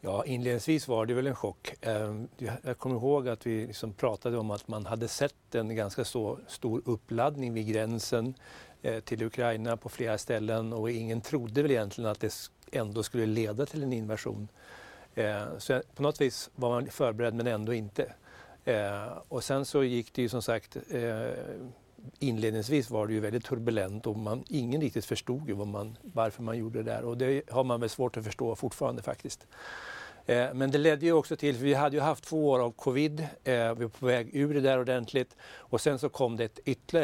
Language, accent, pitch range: Swedish, native, 110-130 Hz